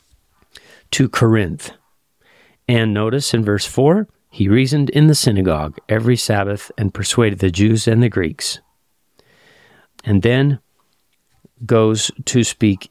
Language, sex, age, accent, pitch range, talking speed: English, male, 40-59, American, 100-130 Hz, 120 wpm